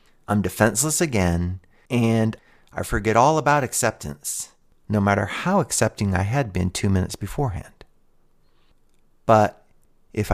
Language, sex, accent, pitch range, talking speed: English, male, American, 95-120 Hz, 120 wpm